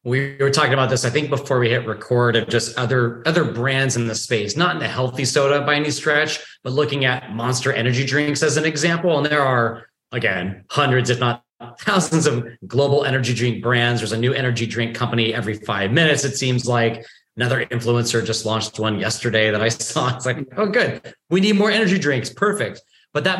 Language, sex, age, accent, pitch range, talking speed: English, male, 30-49, American, 115-150 Hz, 210 wpm